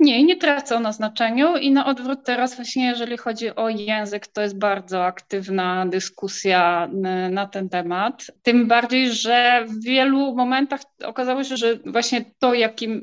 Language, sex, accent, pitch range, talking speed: Polish, female, native, 210-255 Hz, 155 wpm